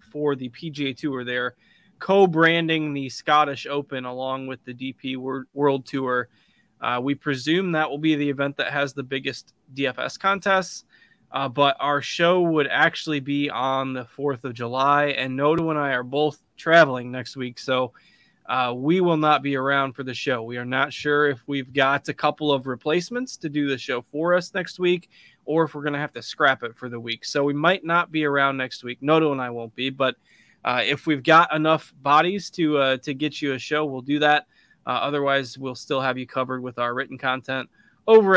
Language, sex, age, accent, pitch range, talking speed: English, male, 20-39, American, 130-155 Hz, 210 wpm